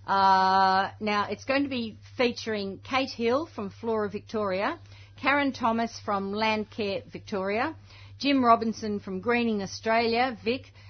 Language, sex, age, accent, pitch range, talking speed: English, female, 50-69, Australian, 190-230 Hz, 125 wpm